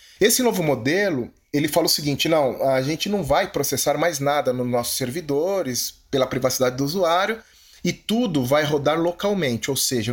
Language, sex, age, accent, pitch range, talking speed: Portuguese, male, 30-49, Brazilian, 120-160 Hz, 170 wpm